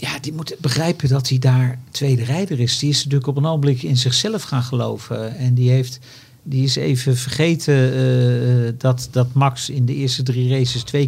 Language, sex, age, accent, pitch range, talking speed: Dutch, male, 50-69, Dutch, 125-150 Hz, 200 wpm